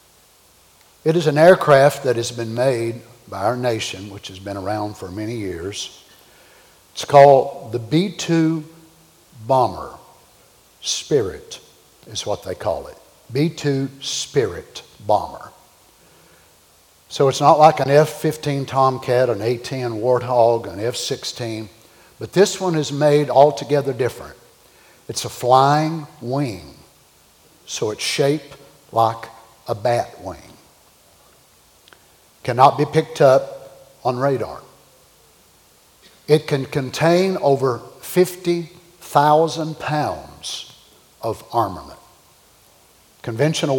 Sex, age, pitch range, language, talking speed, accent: male, 60-79, 120-155 Hz, English, 105 wpm, American